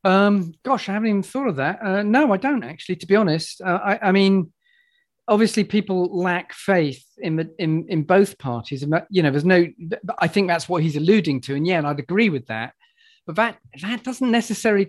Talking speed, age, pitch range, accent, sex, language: 215 wpm, 40-59, 155-220 Hz, British, male, English